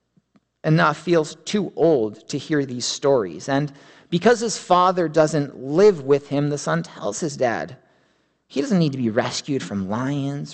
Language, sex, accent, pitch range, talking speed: English, male, American, 110-155 Hz, 170 wpm